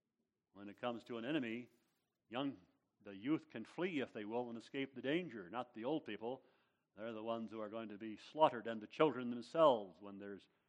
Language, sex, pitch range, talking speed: English, male, 110-125 Hz, 210 wpm